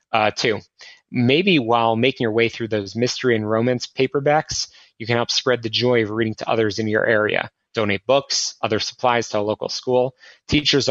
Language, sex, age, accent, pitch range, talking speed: English, male, 30-49, American, 110-135 Hz, 195 wpm